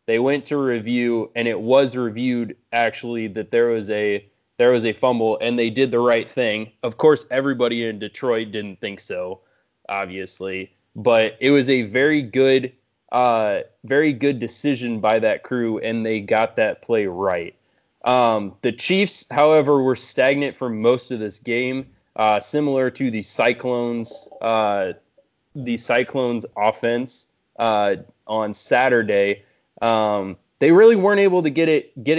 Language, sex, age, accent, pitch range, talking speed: English, male, 20-39, American, 110-135 Hz, 155 wpm